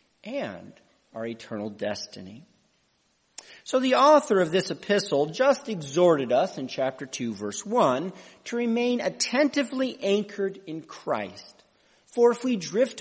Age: 50-69